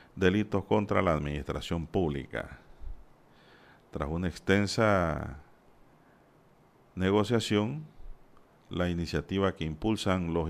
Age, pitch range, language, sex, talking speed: 50-69, 80-105 Hz, Spanish, male, 80 wpm